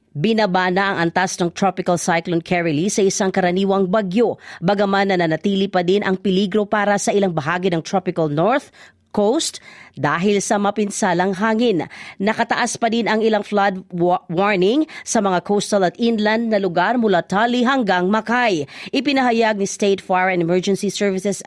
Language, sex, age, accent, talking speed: Filipino, female, 40-59, native, 155 wpm